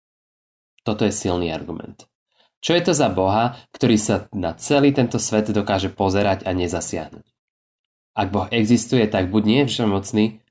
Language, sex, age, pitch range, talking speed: Slovak, male, 20-39, 95-115 Hz, 155 wpm